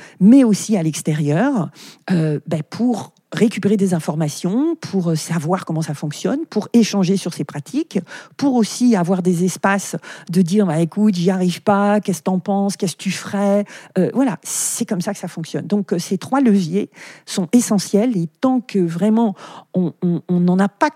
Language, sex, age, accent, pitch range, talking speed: French, female, 40-59, French, 165-210 Hz, 180 wpm